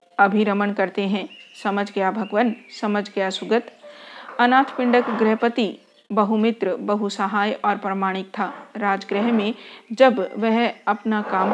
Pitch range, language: 200-240 Hz, Hindi